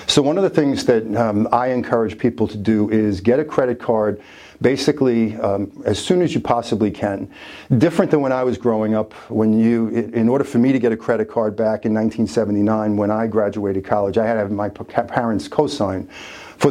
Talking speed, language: 210 wpm, English